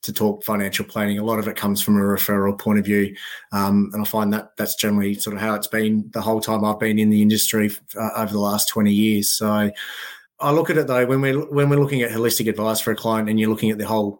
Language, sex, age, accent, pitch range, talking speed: English, male, 20-39, Australian, 105-115 Hz, 275 wpm